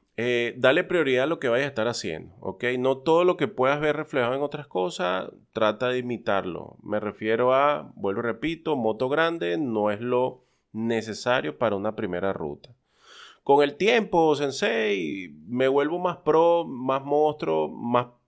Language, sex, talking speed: Spanish, male, 165 wpm